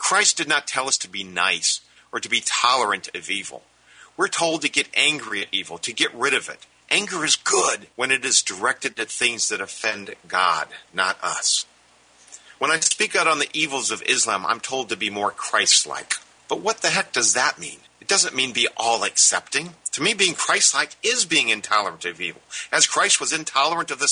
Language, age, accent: English, 50-69, American